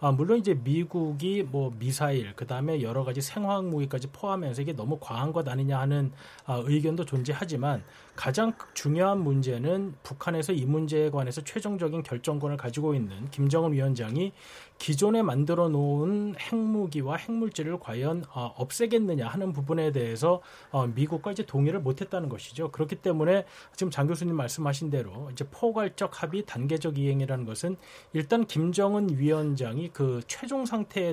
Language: Korean